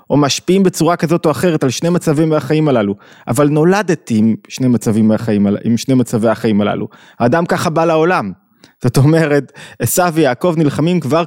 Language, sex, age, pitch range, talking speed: Hebrew, male, 20-39, 120-165 Hz, 165 wpm